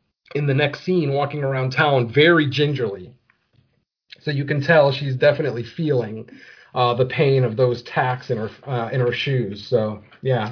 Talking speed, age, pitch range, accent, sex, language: 170 wpm, 40-59, 125-160 Hz, American, male, English